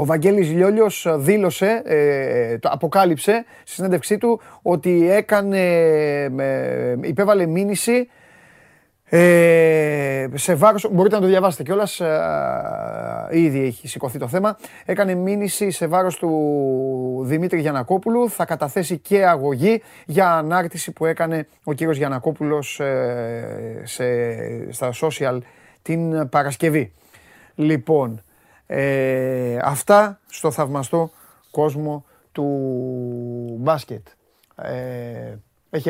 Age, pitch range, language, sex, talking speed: 30-49, 125-180 Hz, Greek, male, 95 wpm